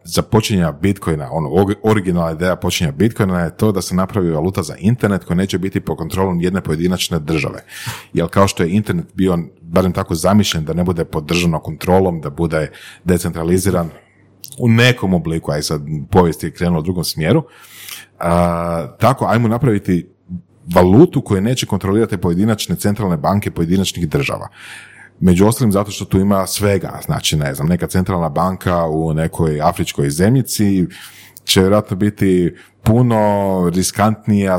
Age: 40-59